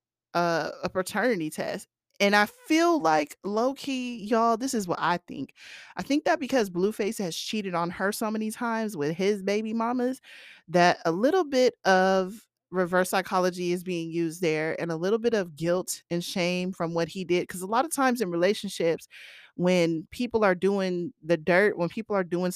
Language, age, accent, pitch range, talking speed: English, 30-49, American, 175-225 Hz, 190 wpm